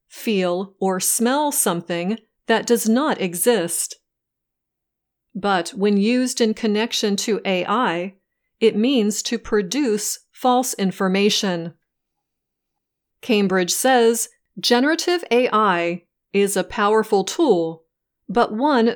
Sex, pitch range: female, 190-240 Hz